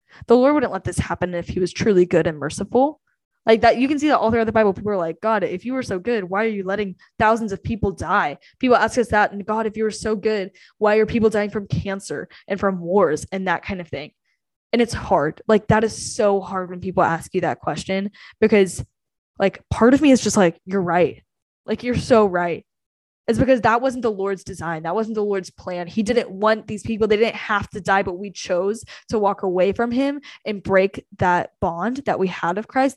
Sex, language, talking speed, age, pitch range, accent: female, English, 240 wpm, 10-29, 190-225 Hz, American